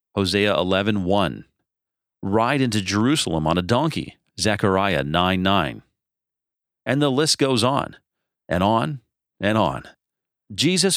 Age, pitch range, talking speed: 40-59, 95-130 Hz, 120 wpm